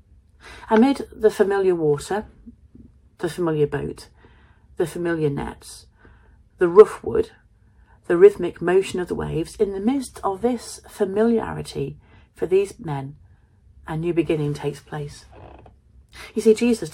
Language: English